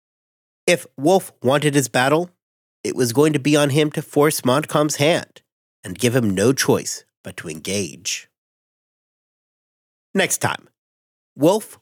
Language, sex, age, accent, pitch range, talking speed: English, male, 40-59, American, 120-150 Hz, 135 wpm